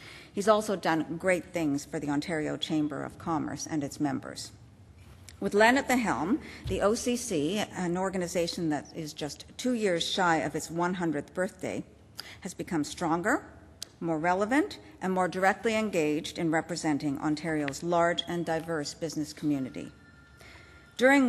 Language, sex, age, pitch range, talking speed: English, female, 50-69, 150-195 Hz, 145 wpm